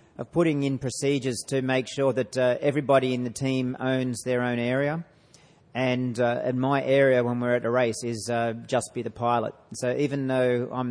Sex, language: male, Japanese